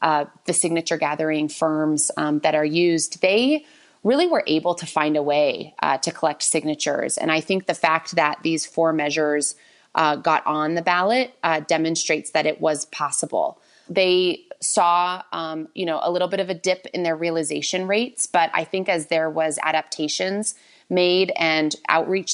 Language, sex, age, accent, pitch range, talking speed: English, female, 30-49, American, 155-185 Hz, 175 wpm